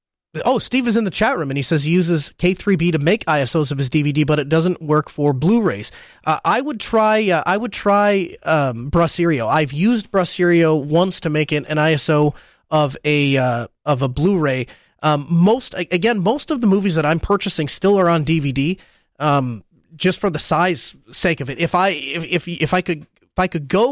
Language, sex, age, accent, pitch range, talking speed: English, male, 30-49, American, 145-190 Hz, 205 wpm